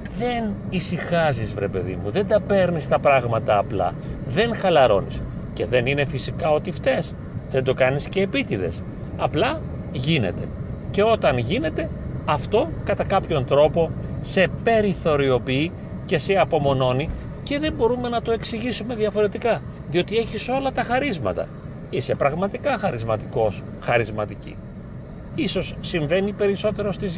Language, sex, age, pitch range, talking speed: Greek, male, 40-59, 130-190 Hz, 130 wpm